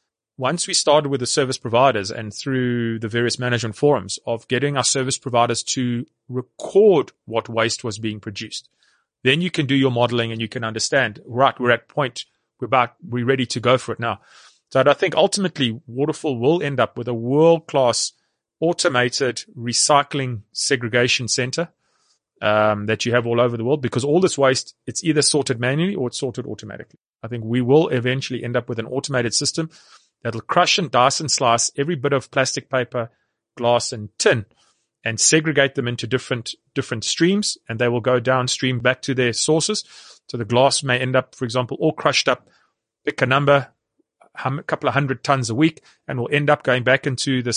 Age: 30-49